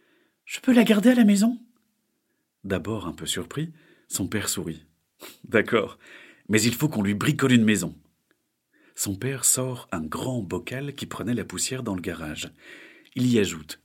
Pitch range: 85-125 Hz